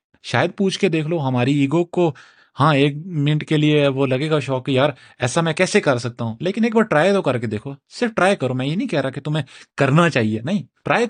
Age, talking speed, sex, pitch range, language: 30-49, 255 wpm, male, 125-155 Hz, Urdu